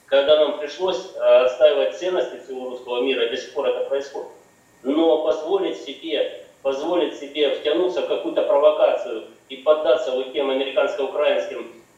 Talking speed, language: 130 wpm, Russian